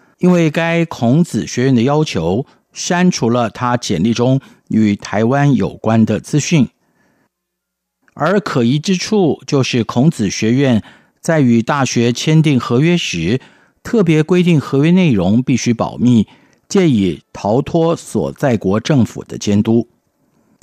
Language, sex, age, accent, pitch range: Chinese, male, 50-69, native, 115-165 Hz